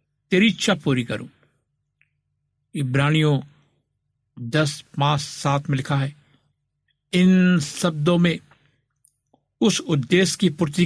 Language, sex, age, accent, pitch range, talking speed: Hindi, male, 60-79, native, 135-160 Hz, 100 wpm